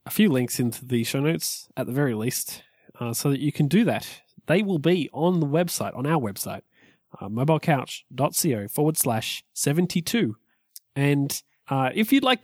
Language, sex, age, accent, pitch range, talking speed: English, male, 20-39, Australian, 125-175 Hz, 170 wpm